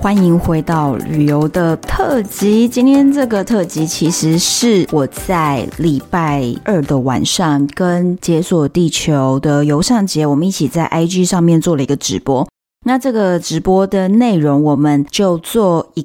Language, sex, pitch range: Chinese, female, 155-205 Hz